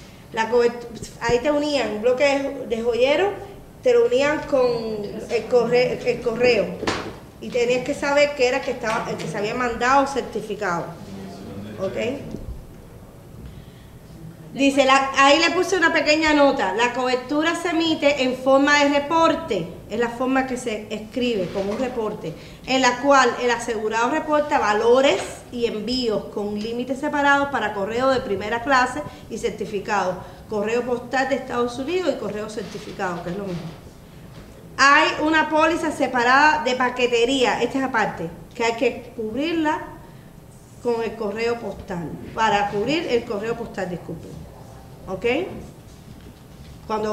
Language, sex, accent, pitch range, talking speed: Spanish, female, American, 210-275 Hz, 145 wpm